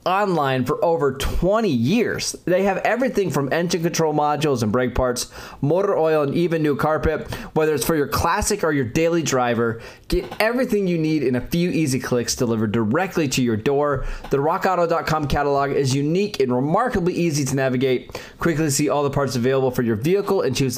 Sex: male